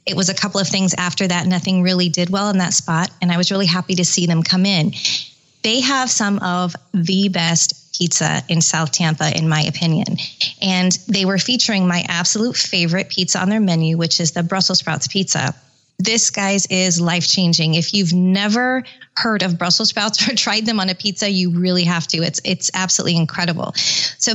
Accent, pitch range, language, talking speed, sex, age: American, 175-210 Hz, English, 200 wpm, female, 20-39